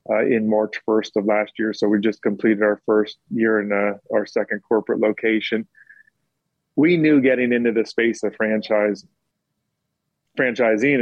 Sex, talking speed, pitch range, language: male, 160 wpm, 110-115 Hz, English